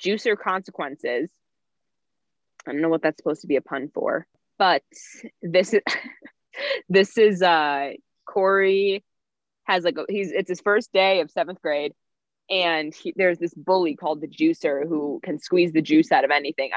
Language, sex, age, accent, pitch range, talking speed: English, female, 20-39, American, 150-185 Hz, 170 wpm